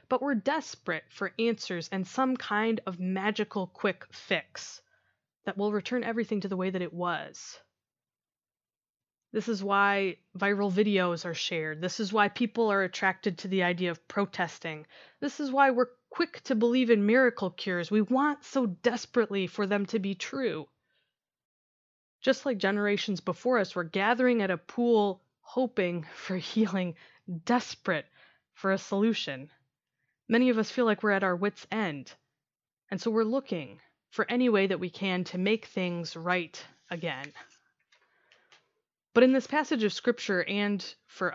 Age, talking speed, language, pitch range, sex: 20-39, 160 wpm, English, 180-230 Hz, female